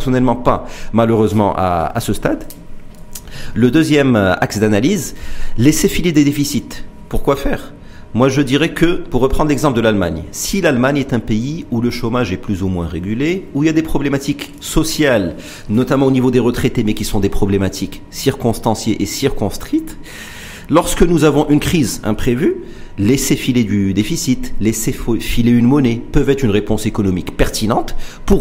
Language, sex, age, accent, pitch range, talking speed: French, male, 40-59, French, 110-150 Hz, 170 wpm